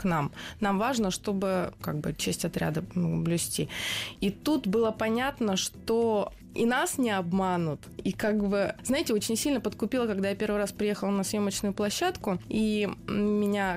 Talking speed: 155 wpm